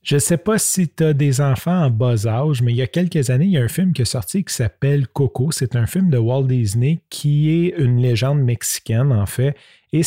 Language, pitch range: French, 115-145 Hz